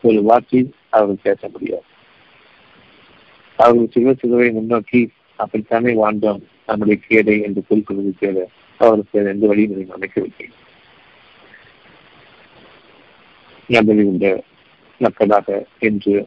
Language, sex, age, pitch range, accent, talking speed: Tamil, male, 50-69, 105-120 Hz, native, 75 wpm